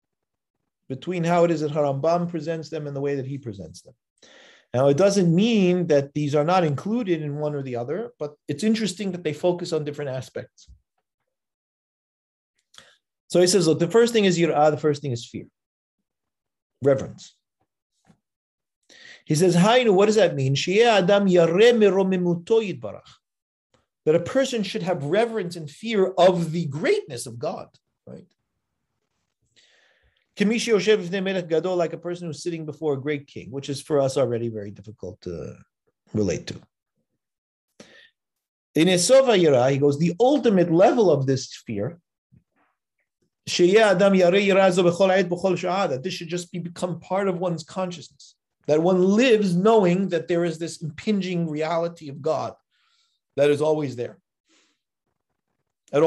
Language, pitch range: English, 150-195 Hz